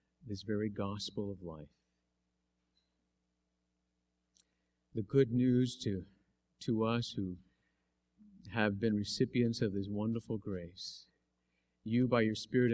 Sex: male